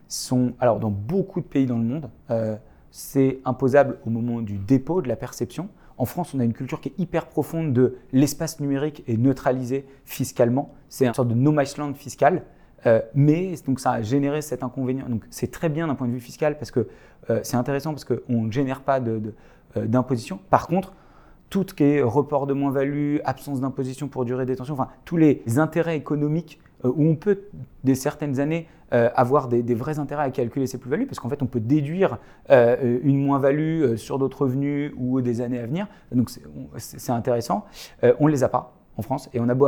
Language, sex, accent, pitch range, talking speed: French, male, French, 125-150 Hz, 215 wpm